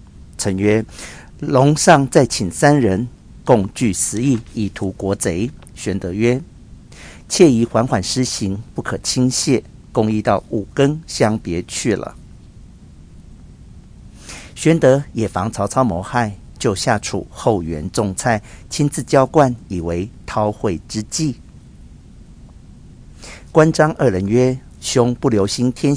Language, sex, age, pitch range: Chinese, male, 50-69, 95-130 Hz